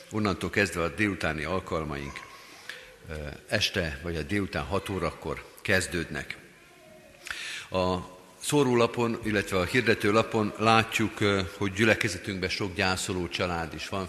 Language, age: Hungarian, 50-69